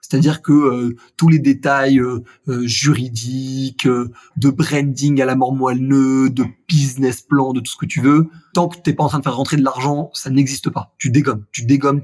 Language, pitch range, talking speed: French, 130-155 Hz, 220 wpm